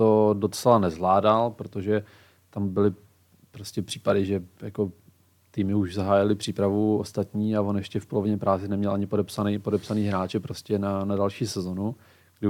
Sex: male